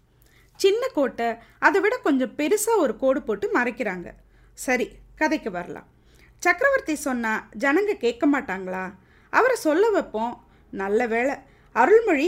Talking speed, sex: 115 wpm, female